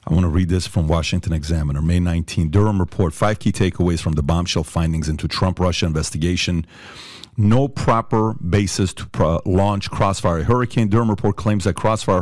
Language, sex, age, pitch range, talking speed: English, male, 40-59, 95-120 Hz, 165 wpm